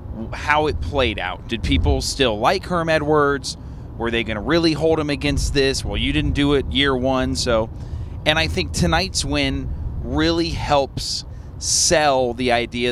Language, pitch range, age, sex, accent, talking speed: English, 95-135 Hz, 30-49, male, American, 170 wpm